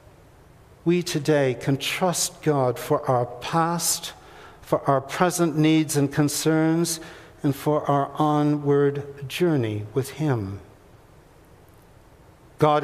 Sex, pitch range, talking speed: male, 145-170 Hz, 105 wpm